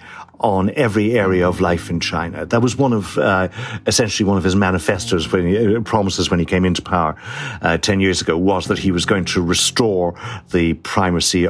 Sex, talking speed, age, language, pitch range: male, 205 wpm, 60-79, English, 90-115 Hz